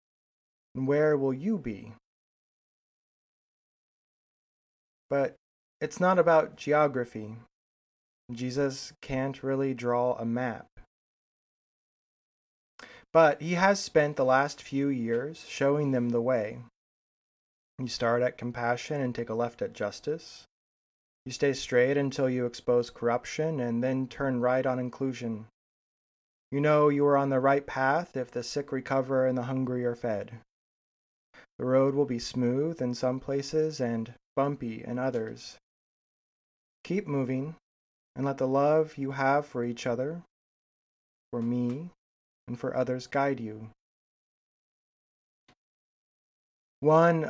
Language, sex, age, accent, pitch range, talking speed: English, male, 20-39, American, 120-140 Hz, 125 wpm